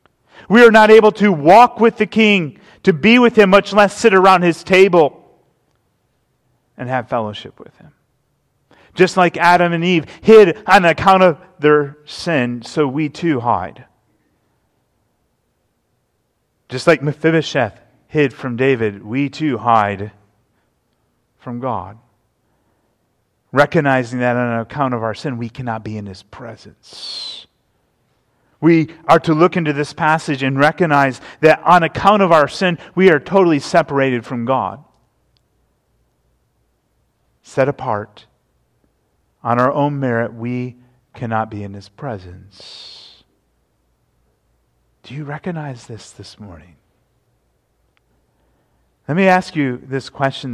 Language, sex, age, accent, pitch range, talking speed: English, male, 40-59, American, 115-170 Hz, 130 wpm